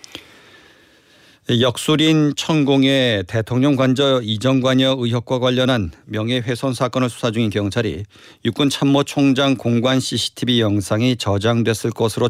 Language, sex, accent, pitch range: Korean, male, native, 110-130 Hz